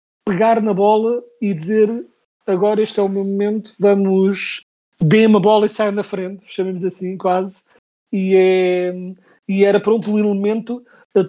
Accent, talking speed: Portuguese, 160 wpm